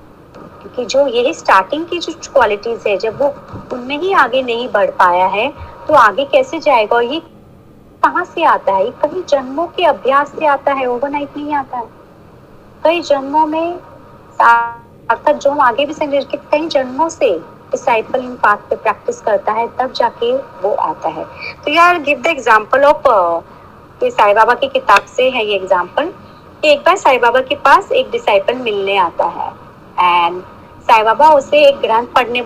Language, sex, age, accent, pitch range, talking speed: Hindi, female, 30-49, native, 245-335 Hz, 150 wpm